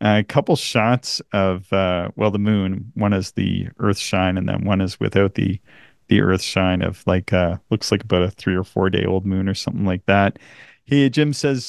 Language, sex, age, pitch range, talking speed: English, male, 40-59, 95-120 Hz, 220 wpm